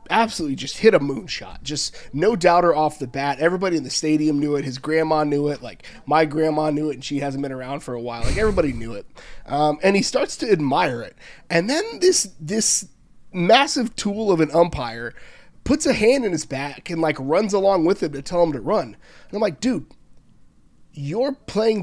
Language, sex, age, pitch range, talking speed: English, male, 30-49, 145-195 Hz, 210 wpm